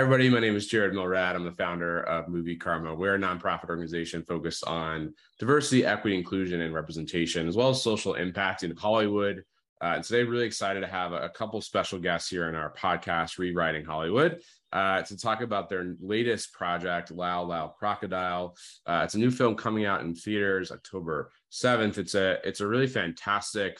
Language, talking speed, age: English, 190 wpm, 30-49